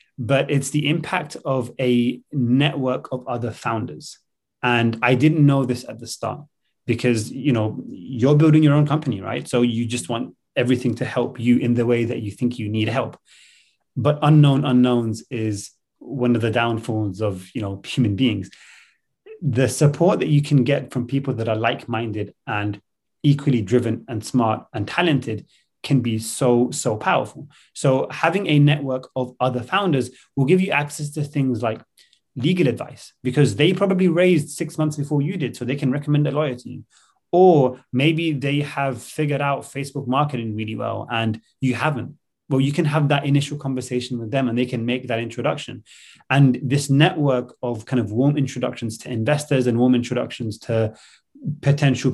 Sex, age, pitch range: male, 30-49, 120-145 Hz